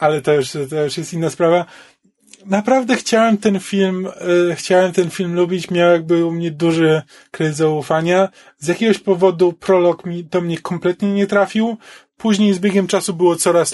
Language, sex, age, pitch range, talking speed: Polish, male, 20-39, 160-185 Hz, 160 wpm